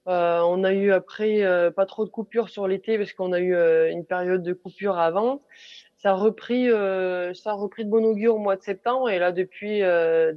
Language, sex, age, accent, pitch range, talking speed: French, female, 20-39, French, 180-220 Hz, 230 wpm